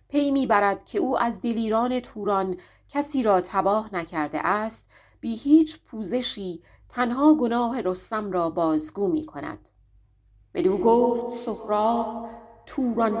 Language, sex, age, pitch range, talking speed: Persian, female, 40-59, 185-265 Hz, 125 wpm